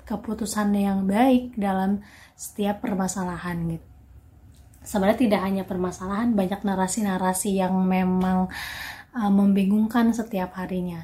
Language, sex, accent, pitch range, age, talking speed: Indonesian, female, native, 190-230 Hz, 20-39, 105 wpm